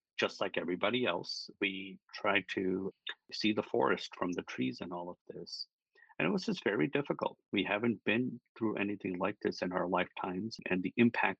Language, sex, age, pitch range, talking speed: English, male, 50-69, 90-120 Hz, 190 wpm